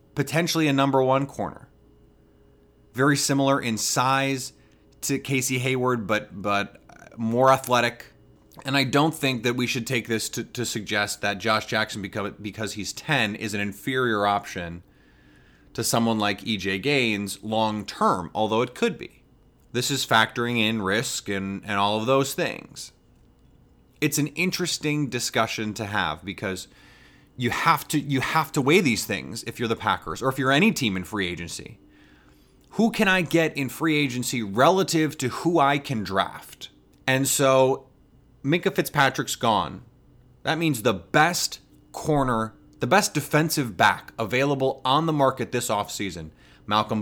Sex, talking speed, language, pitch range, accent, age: male, 155 wpm, English, 110-140 Hz, American, 30-49